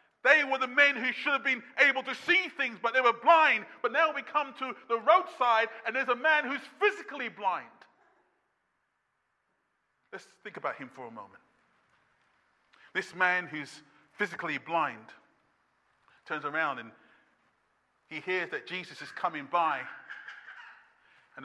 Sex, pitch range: male, 200-325 Hz